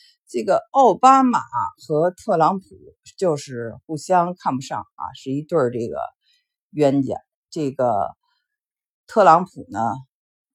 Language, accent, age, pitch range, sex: Chinese, native, 50-69, 130-220 Hz, female